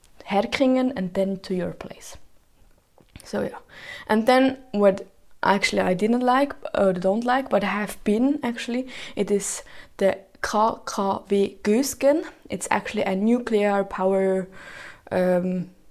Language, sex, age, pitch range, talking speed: English, female, 20-39, 190-250 Hz, 130 wpm